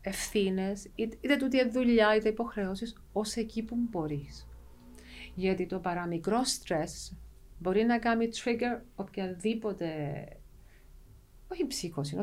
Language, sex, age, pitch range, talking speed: Greek, female, 40-59, 190-255 Hz, 120 wpm